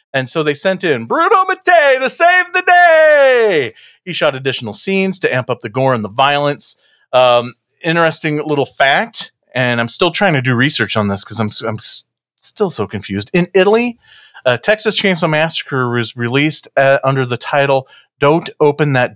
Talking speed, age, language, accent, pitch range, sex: 180 wpm, 40-59, English, American, 115-170 Hz, male